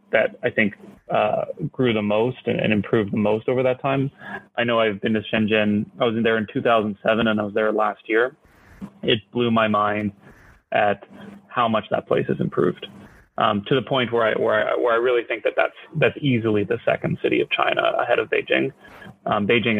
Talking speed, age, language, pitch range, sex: 205 wpm, 20-39, English, 110-135 Hz, male